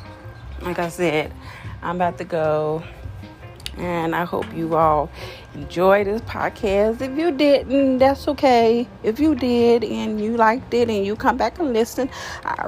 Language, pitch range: English, 175-240 Hz